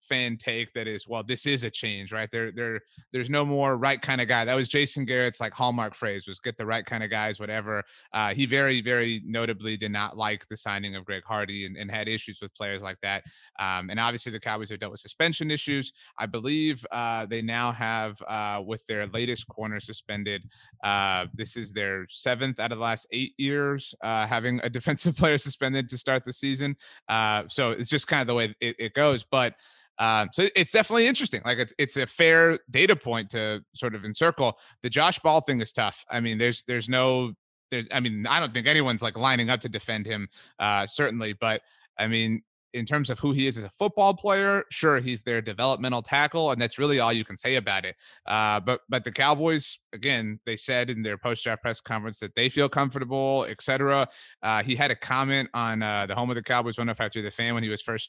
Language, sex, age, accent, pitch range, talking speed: English, male, 30-49, American, 110-130 Hz, 225 wpm